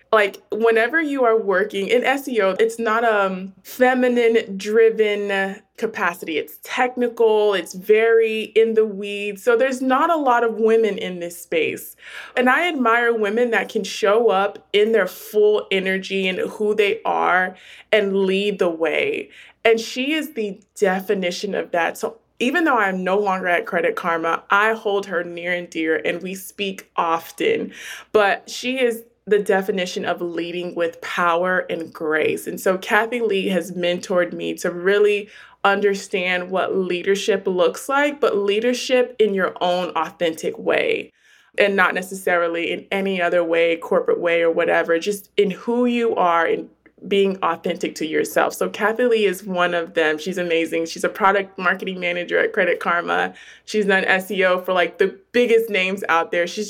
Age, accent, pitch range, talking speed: 20-39, American, 180-230 Hz, 165 wpm